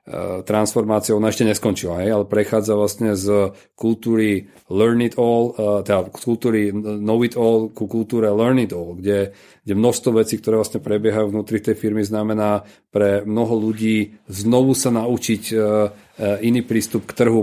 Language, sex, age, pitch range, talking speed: Czech, male, 40-59, 105-115 Hz, 140 wpm